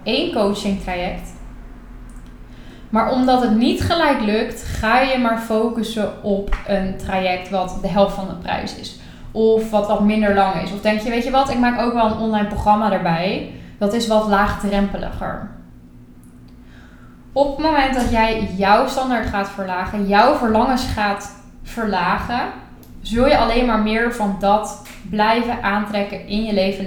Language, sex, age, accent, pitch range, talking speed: Dutch, female, 10-29, Dutch, 200-245 Hz, 160 wpm